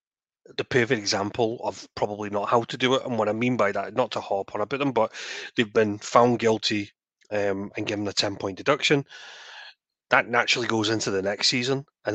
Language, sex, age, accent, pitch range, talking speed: English, male, 30-49, British, 105-135 Hz, 205 wpm